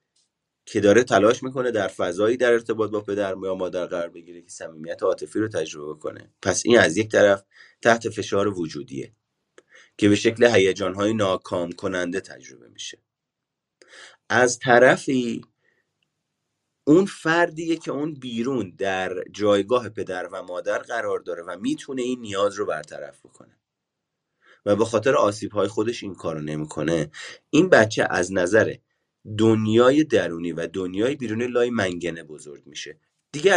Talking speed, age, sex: 145 wpm, 30-49, male